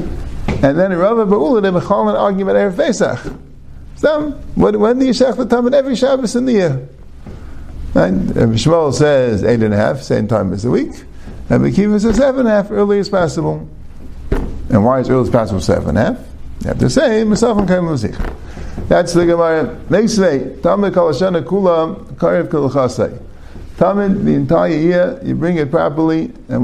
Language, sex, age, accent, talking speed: English, male, 50-69, American, 170 wpm